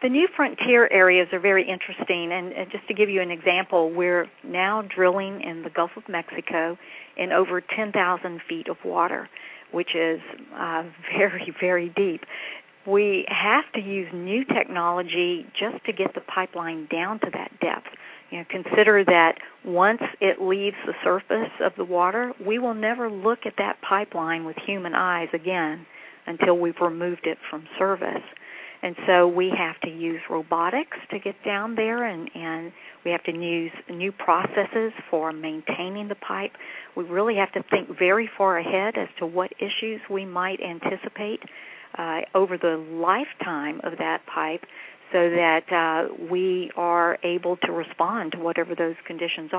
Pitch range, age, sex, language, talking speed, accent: 170-200 Hz, 50-69, female, English, 165 wpm, American